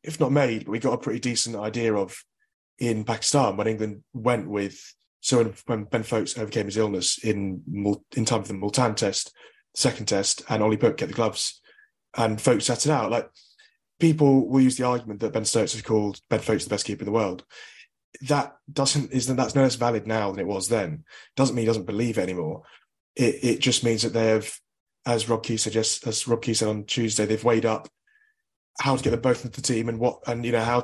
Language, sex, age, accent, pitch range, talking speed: English, male, 20-39, British, 110-135 Hz, 230 wpm